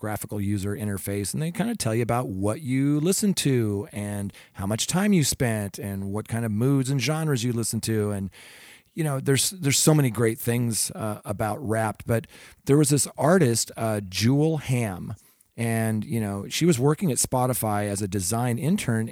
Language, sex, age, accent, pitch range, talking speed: English, male, 40-59, American, 100-130 Hz, 195 wpm